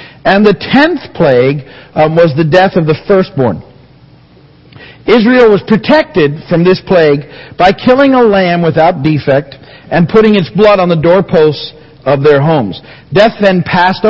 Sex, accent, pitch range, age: male, American, 145-200 Hz, 50-69